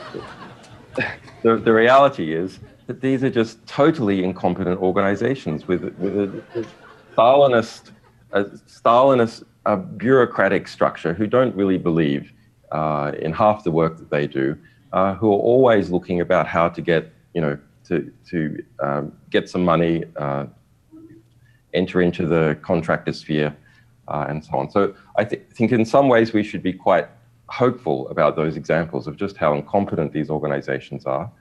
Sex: male